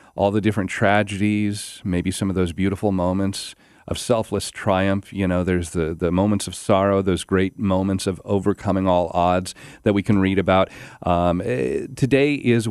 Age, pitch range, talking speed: 40-59, 95-120 Hz, 170 wpm